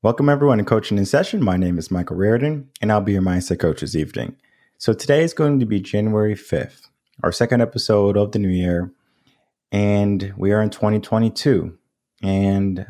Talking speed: 185 wpm